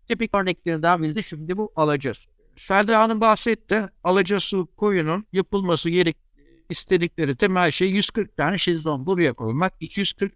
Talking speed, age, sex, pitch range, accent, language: 125 wpm, 60-79, male, 170-225 Hz, native, Turkish